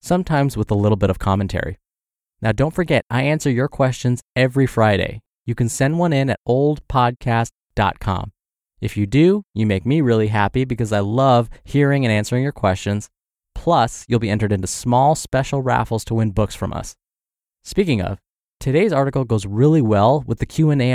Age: 20-39